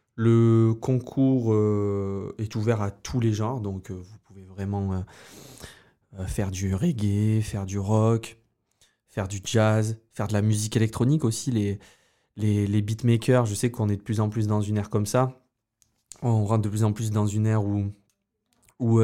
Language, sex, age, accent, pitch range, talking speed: French, male, 20-39, French, 105-120 Hz, 170 wpm